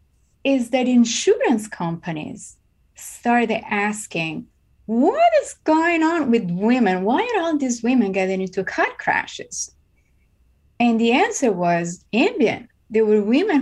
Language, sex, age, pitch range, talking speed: English, female, 30-49, 175-230 Hz, 130 wpm